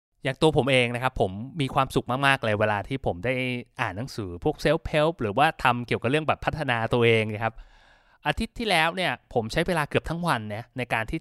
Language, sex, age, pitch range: Thai, male, 20-39, 115-155 Hz